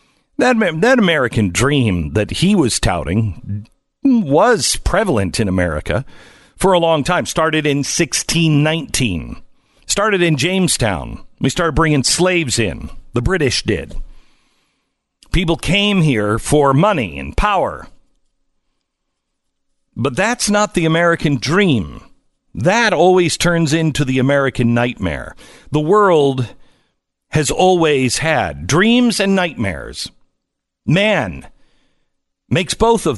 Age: 50-69